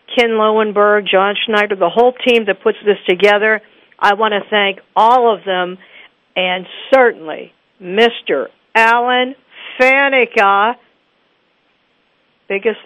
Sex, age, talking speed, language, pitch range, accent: female, 60-79, 110 wpm, English, 185-235 Hz, American